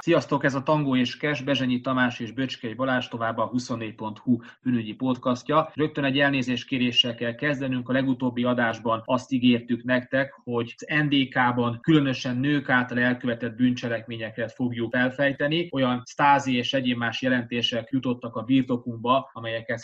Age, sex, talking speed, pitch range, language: 20-39, male, 140 wpm, 120-135 Hz, Hungarian